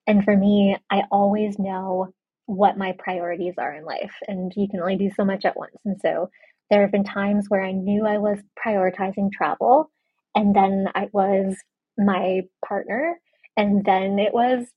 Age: 20-39